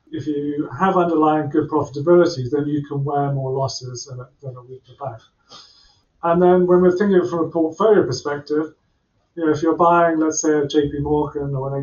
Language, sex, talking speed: English, male, 190 wpm